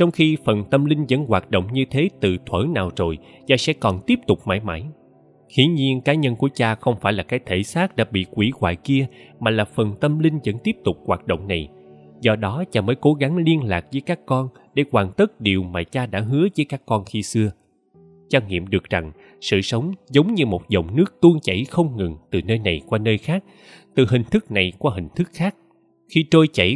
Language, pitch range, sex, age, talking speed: Vietnamese, 95-150 Hz, male, 20-39, 235 wpm